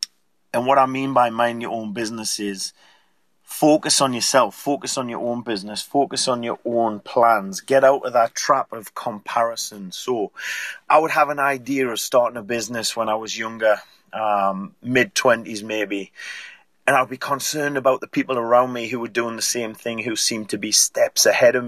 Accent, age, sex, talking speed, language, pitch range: British, 30-49, male, 190 wpm, English, 105-135 Hz